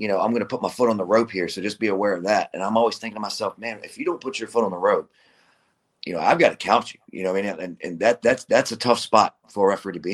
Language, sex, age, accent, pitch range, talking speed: English, male, 30-49, American, 95-115 Hz, 350 wpm